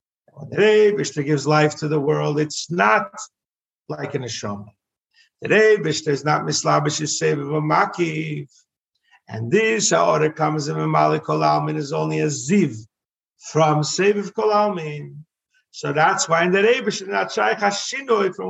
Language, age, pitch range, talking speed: English, 50-69, 130-190 Hz, 150 wpm